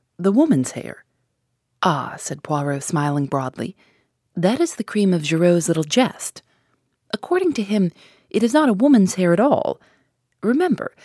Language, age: English, 30-49